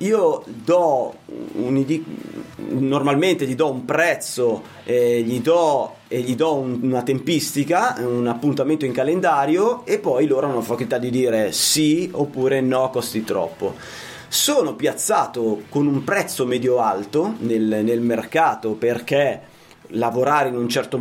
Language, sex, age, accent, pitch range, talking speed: Italian, male, 30-49, native, 115-150 Hz, 140 wpm